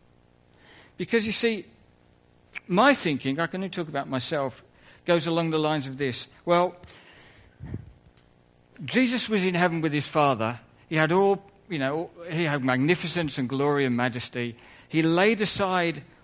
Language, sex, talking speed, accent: English, male, 150 wpm, British